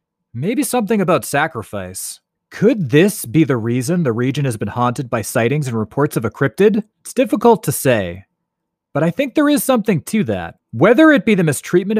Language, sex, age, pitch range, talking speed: English, male, 30-49, 115-170 Hz, 190 wpm